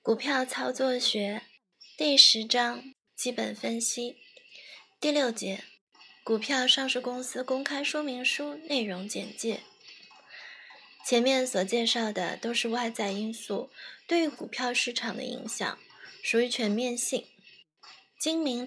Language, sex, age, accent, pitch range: Chinese, female, 20-39, native, 230-275 Hz